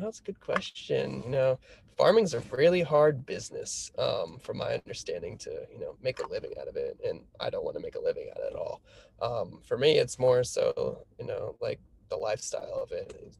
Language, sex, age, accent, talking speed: English, male, 20-39, American, 230 wpm